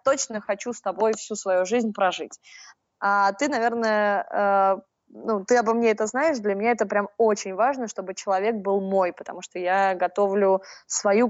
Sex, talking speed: female, 175 wpm